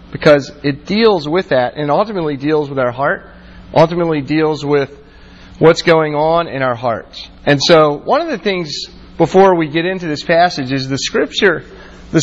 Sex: male